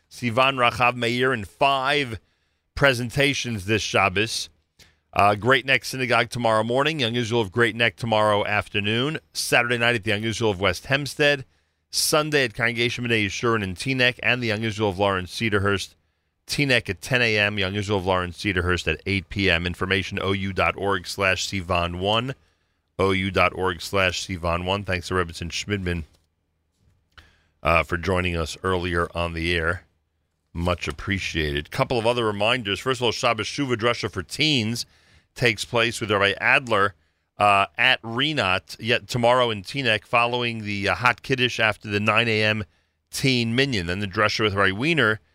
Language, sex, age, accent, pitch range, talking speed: English, male, 40-59, American, 90-120 Hz, 155 wpm